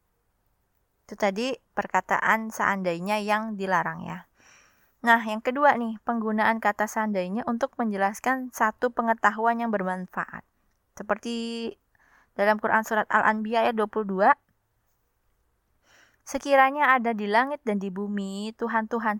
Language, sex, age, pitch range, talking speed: Indonesian, female, 20-39, 180-235 Hz, 110 wpm